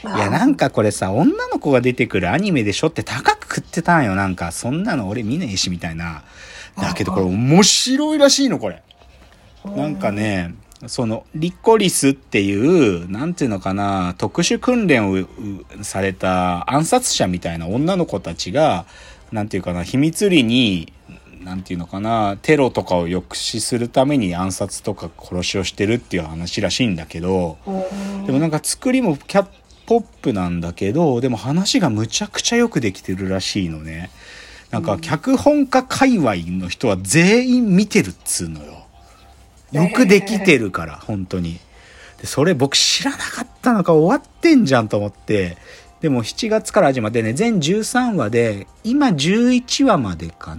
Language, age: Japanese, 40-59